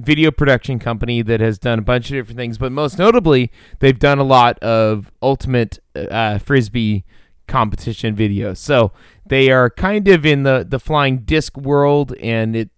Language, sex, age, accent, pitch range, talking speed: English, male, 20-39, American, 105-130 Hz, 175 wpm